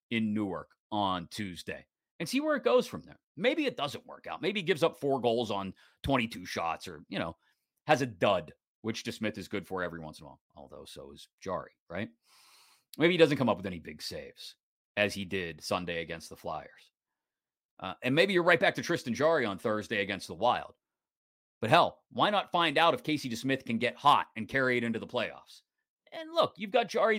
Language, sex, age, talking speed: English, male, 30-49, 220 wpm